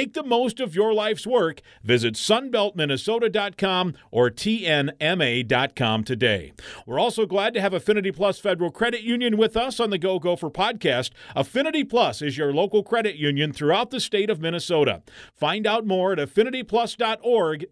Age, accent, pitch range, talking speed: 50-69, American, 150-215 Hz, 155 wpm